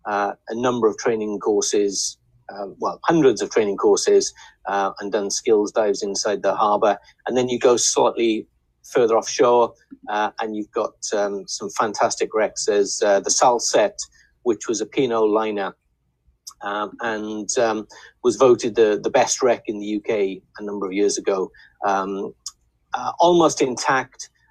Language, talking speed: English, 160 wpm